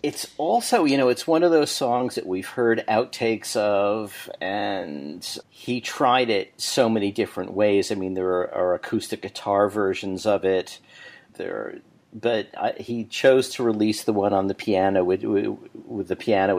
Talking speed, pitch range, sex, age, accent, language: 175 wpm, 95-120 Hz, male, 50-69, American, English